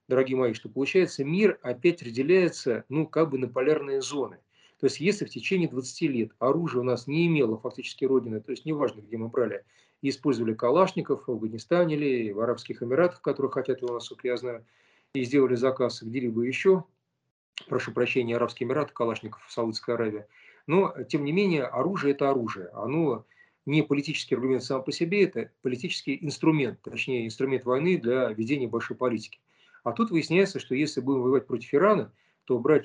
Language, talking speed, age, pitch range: Russian, 175 wpm, 40-59, 125-160 Hz